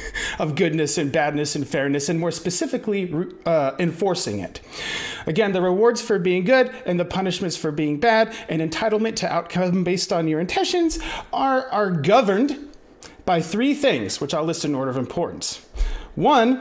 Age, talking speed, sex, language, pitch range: 40-59, 165 wpm, male, English, 150-235 Hz